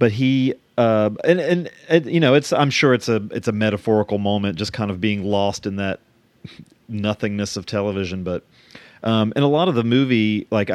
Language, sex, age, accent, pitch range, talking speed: English, male, 40-59, American, 100-115 Hz, 205 wpm